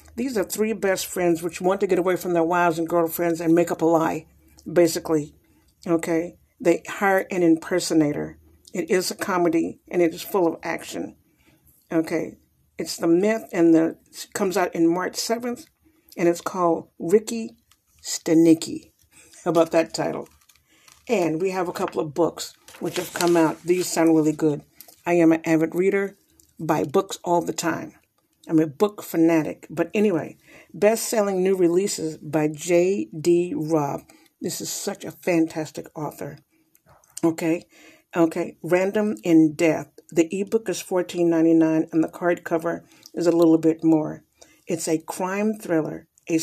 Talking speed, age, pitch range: 160 wpm, 50-69, 165-185 Hz